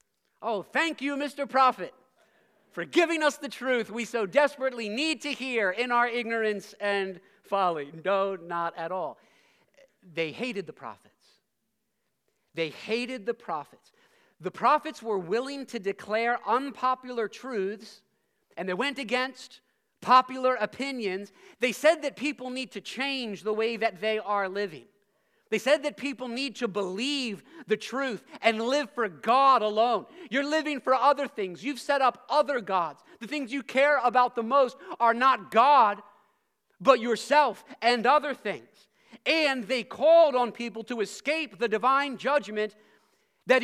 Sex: male